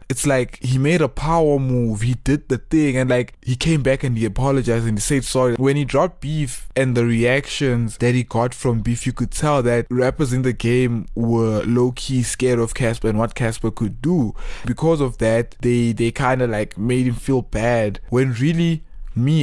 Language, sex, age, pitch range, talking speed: English, male, 20-39, 120-135 Hz, 210 wpm